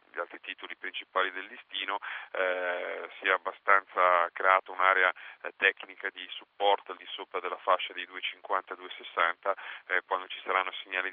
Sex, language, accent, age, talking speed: male, Italian, native, 30-49, 140 wpm